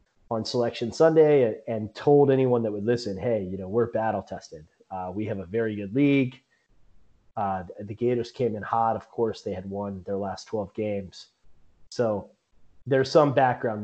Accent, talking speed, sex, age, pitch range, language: American, 180 wpm, male, 30-49, 105-135 Hz, English